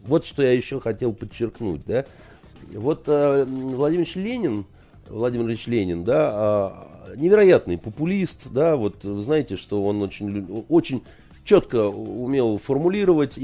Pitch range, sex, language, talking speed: 100-150 Hz, male, Russian, 125 wpm